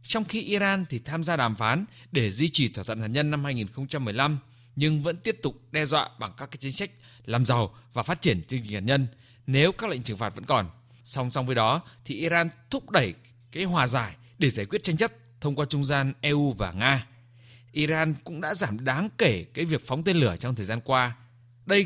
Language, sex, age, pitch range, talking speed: Vietnamese, male, 20-39, 120-165 Hz, 230 wpm